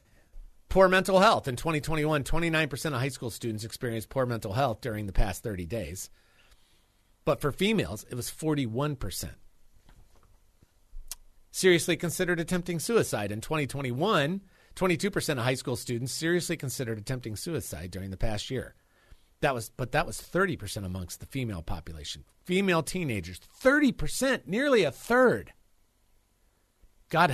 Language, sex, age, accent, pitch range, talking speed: English, male, 40-59, American, 90-145 Hz, 130 wpm